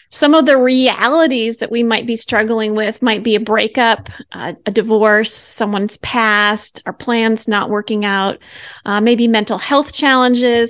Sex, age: female, 30-49